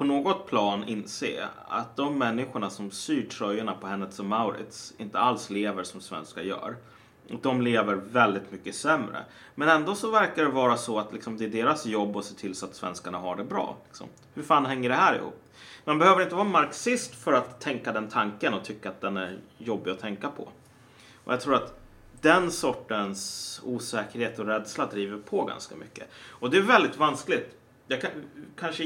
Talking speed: 190 wpm